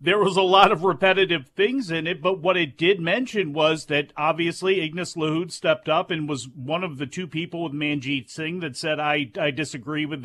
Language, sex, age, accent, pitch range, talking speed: English, male, 40-59, American, 155-195 Hz, 215 wpm